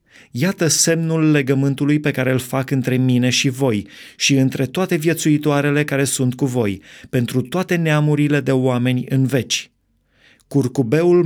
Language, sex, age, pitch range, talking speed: Romanian, male, 30-49, 125-150 Hz, 145 wpm